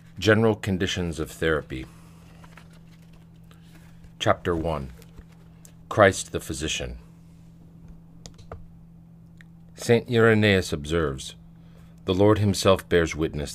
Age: 40-59